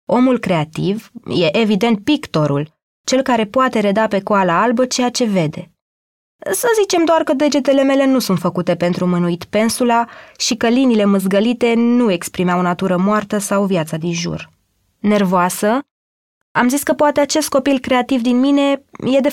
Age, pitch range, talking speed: 20-39, 170-245 Hz, 160 wpm